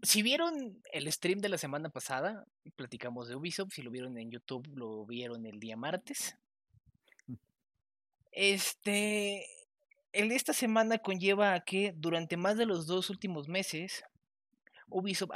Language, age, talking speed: Spanish, 30-49, 145 wpm